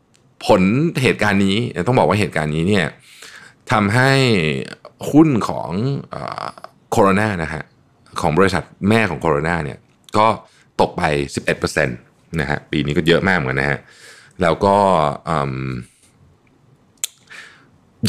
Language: Thai